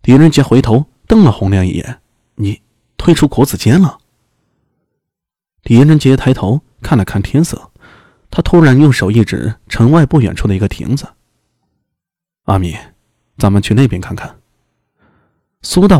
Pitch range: 100-135 Hz